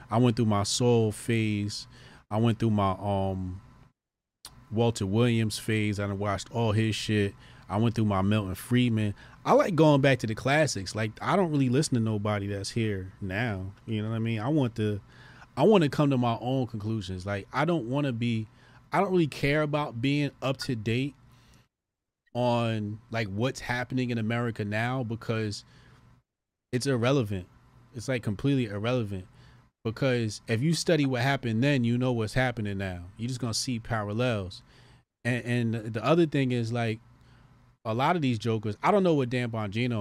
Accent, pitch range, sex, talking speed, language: American, 105-125 Hz, male, 185 wpm, English